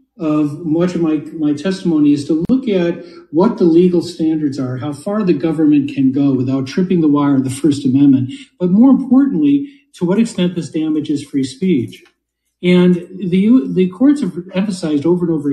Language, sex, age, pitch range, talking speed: English, male, 50-69, 150-190 Hz, 185 wpm